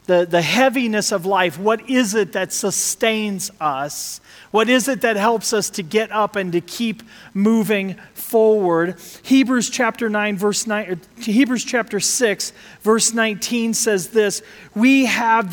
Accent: American